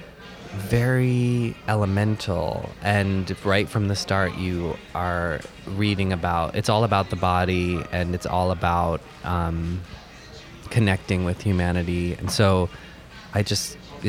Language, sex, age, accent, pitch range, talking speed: English, male, 20-39, American, 90-105 Hz, 120 wpm